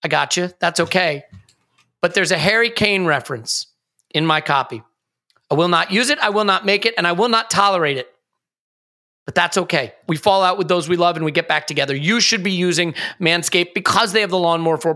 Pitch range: 175-235 Hz